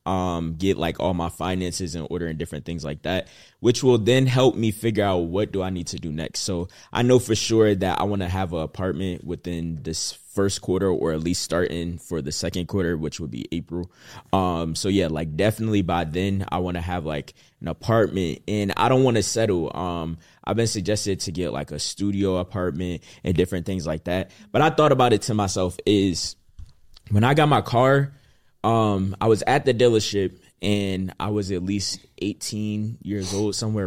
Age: 20-39